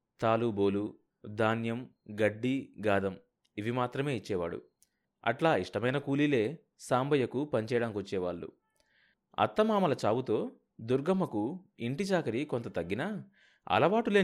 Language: Telugu